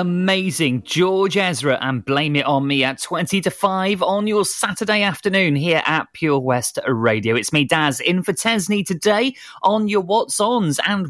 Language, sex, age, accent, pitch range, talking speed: English, male, 30-49, British, 140-185 Hz, 180 wpm